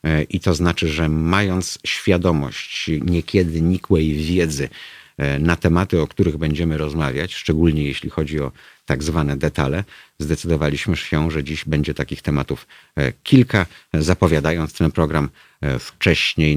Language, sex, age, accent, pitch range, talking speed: Polish, male, 50-69, native, 75-90 Hz, 125 wpm